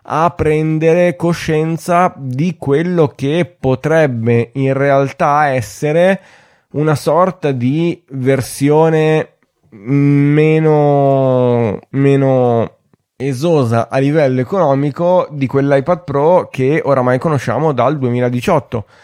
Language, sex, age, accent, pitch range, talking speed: Italian, male, 20-39, native, 120-145 Hz, 90 wpm